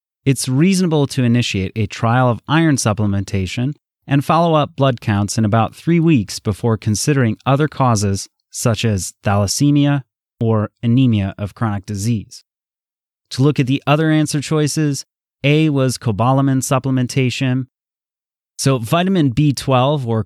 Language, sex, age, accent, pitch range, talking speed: English, male, 30-49, American, 105-135 Hz, 135 wpm